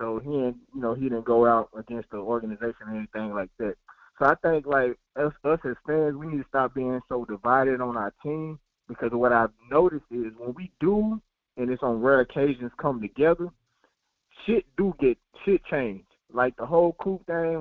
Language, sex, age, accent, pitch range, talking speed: English, male, 20-39, American, 120-145 Hz, 200 wpm